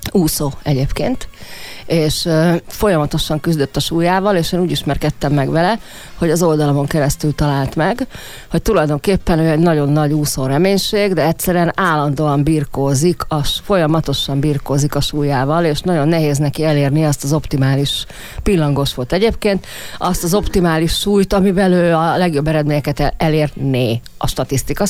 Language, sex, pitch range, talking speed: Hungarian, female, 140-180 Hz, 140 wpm